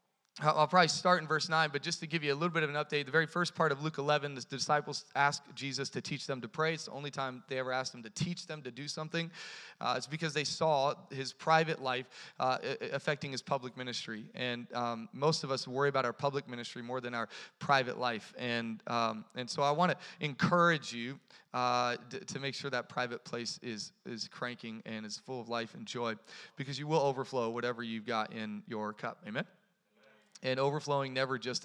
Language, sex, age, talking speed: English, male, 30-49, 220 wpm